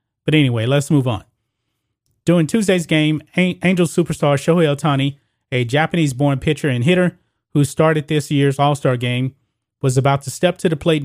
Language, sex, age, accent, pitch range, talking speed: English, male, 30-49, American, 125-155 Hz, 165 wpm